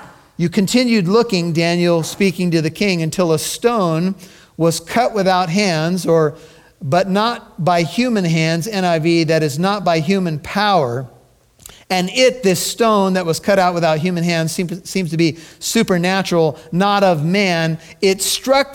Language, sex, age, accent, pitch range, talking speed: English, male, 40-59, American, 175-235 Hz, 155 wpm